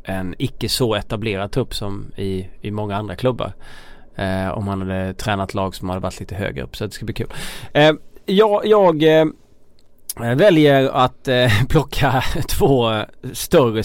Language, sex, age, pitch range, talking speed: Swedish, male, 20-39, 100-125 Hz, 165 wpm